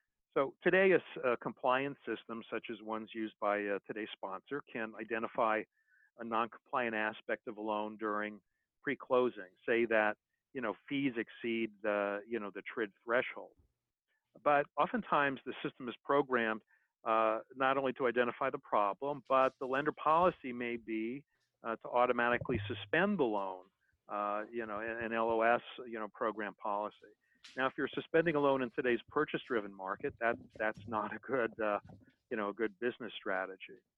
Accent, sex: American, male